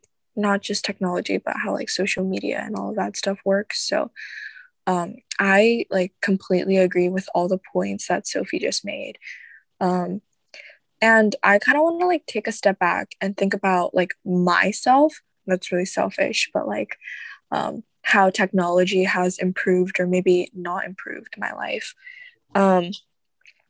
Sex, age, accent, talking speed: female, 10-29, American, 155 wpm